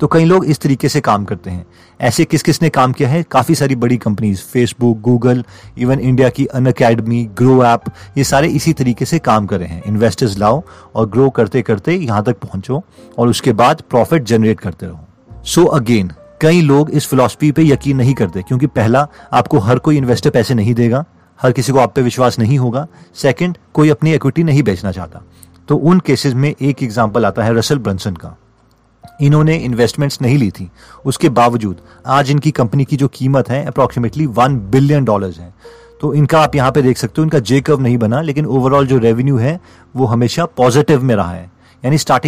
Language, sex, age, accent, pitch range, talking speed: Hindi, male, 30-49, native, 115-150 Hz, 195 wpm